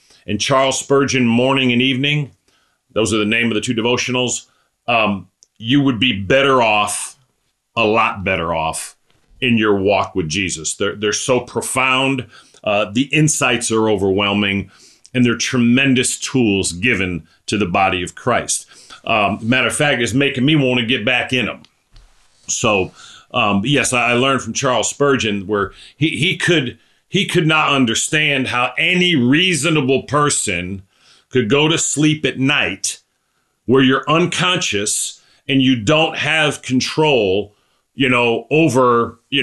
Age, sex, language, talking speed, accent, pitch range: 40-59, male, English, 150 wpm, American, 115-145 Hz